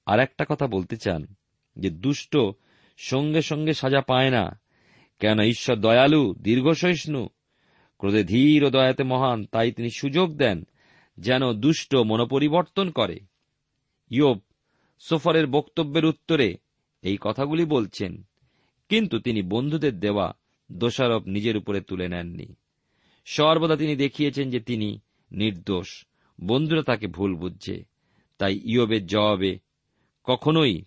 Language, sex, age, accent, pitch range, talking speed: Bengali, male, 50-69, native, 100-150 Hz, 115 wpm